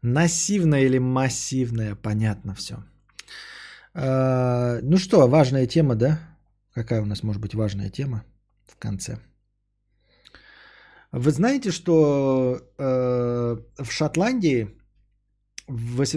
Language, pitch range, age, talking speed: Bulgarian, 110-155 Hz, 20-39, 95 wpm